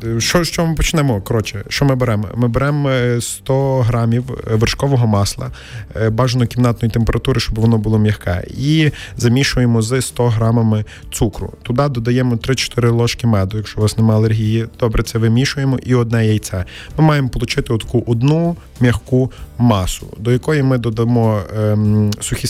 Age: 20-39